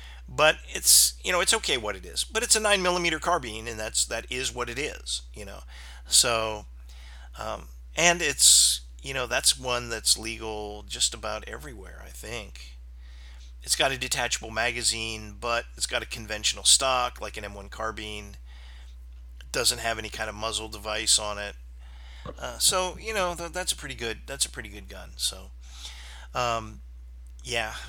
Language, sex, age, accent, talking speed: English, male, 40-59, American, 170 wpm